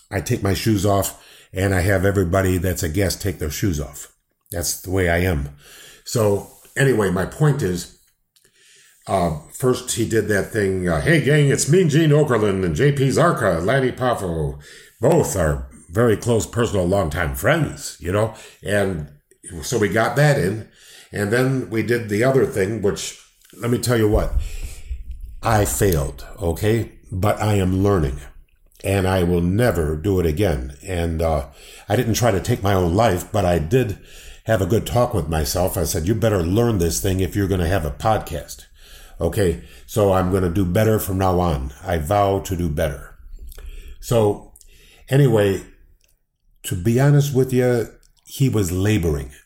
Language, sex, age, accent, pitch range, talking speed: English, male, 50-69, American, 85-110 Hz, 175 wpm